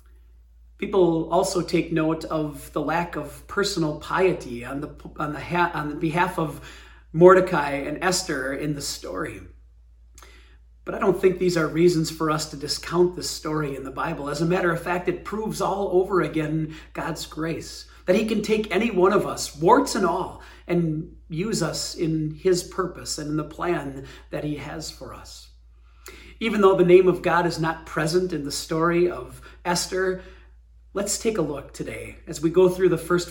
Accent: American